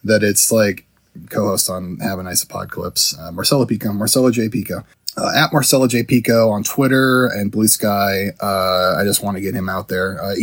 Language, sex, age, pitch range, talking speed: English, male, 20-39, 100-120 Hz, 215 wpm